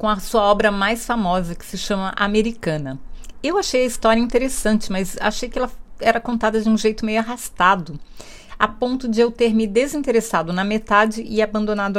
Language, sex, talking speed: Portuguese, female, 185 wpm